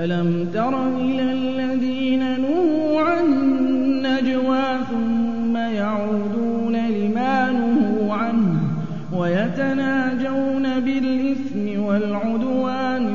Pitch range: 215-265 Hz